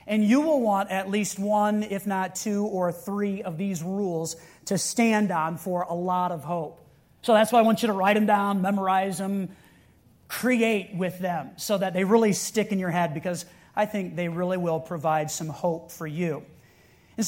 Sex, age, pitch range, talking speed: male, 30-49, 175-225 Hz, 200 wpm